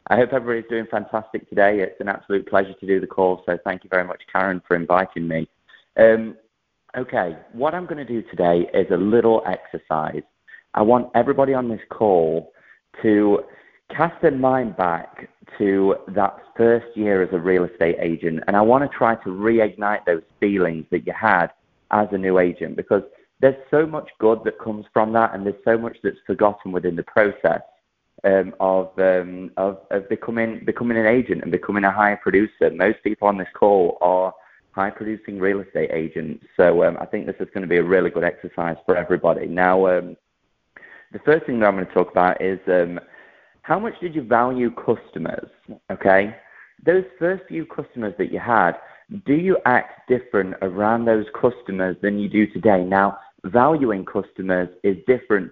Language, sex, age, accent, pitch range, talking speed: English, male, 30-49, British, 95-115 Hz, 185 wpm